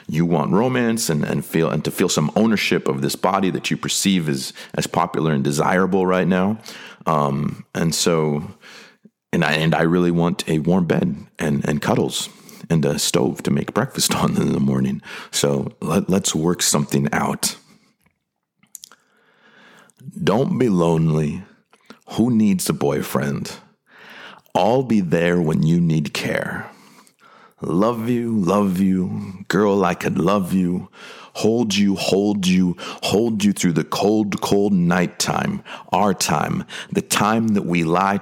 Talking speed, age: 150 wpm, 40-59